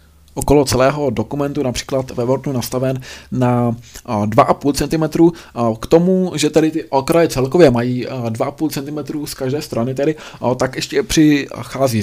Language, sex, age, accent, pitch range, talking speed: Czech, male, 20-39, native, 115-135 Hz, 155 wpm